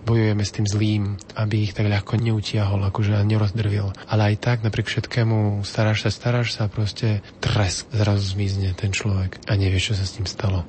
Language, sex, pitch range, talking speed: Slovak, male, 100-110 Hz, 190 wpm